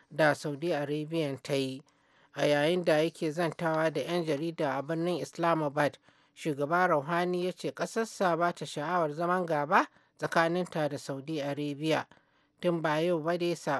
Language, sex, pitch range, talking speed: English, male, 150-185 Hz, 140 wpm